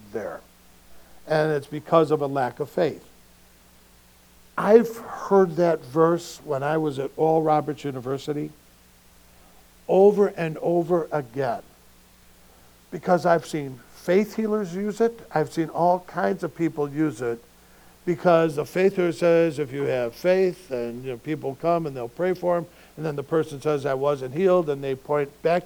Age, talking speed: 60-79, 160 wpm